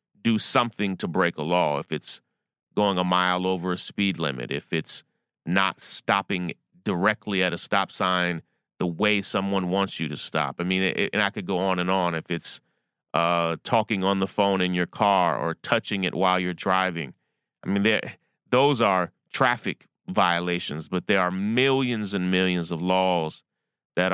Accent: American